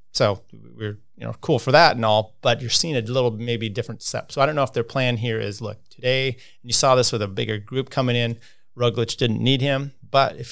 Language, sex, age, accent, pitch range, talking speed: English, male, 30-49, American, 110-130 Hz, 250 wpm